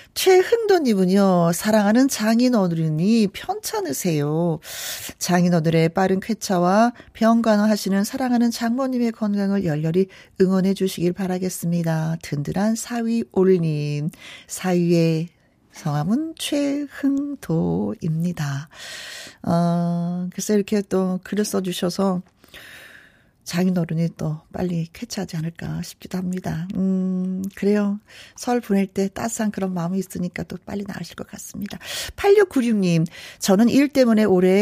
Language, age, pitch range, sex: Korean, 40-59, 180-235 Hz, female